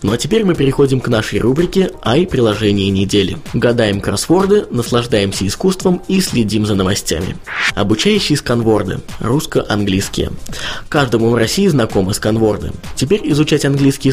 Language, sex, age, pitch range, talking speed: Russian, male, 20-39, 105-145 Hz, 125 wpm